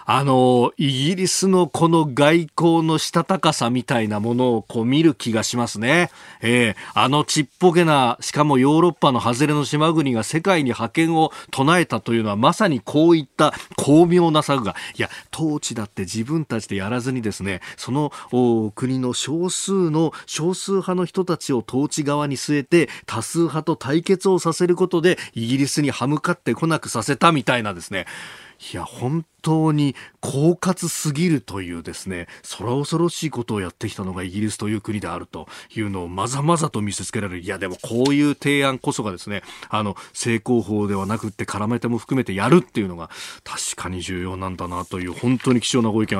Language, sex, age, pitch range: Japanese, male, 40-59, 110-155 Hz